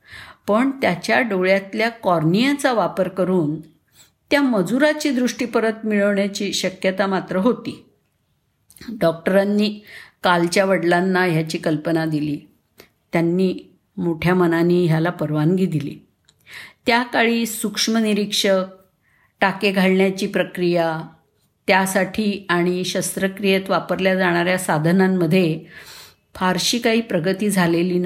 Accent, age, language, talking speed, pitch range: native, 50-69, Marathi, 90 wpm, 175-210 Hz